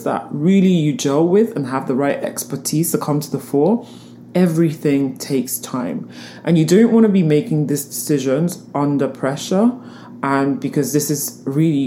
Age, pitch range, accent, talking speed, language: 20-39, 130-175 Hz, British, 170 wpm, English